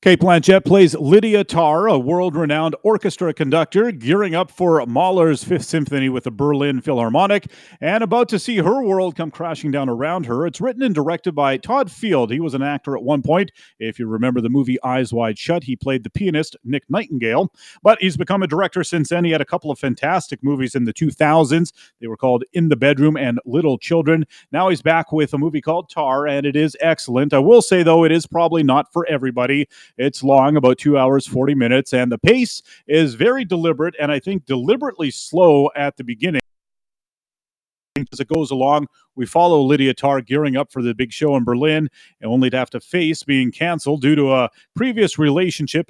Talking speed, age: 205 wpm, 30-49